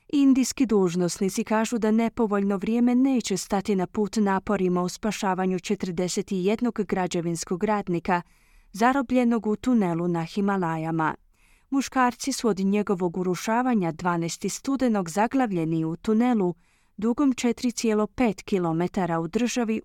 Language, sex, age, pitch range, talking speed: Croatian, female, 30-49, 180-235 Hz, 110 wpm